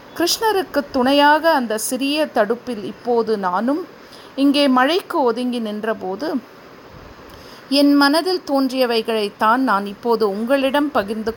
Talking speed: 95 wpm